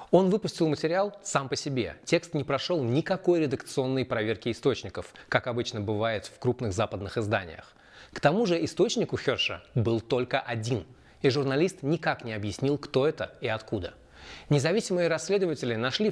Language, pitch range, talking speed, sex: Russian, 115-160 Hz, 155 wpm, male